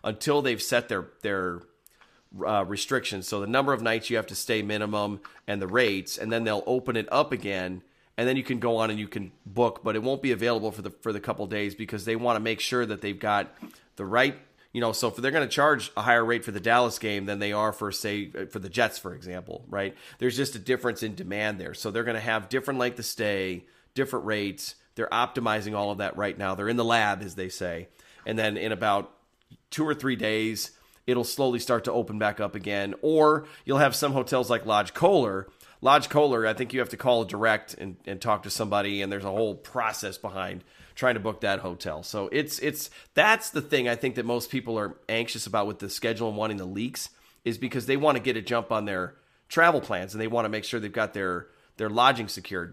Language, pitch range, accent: English, 100-120 Hz, American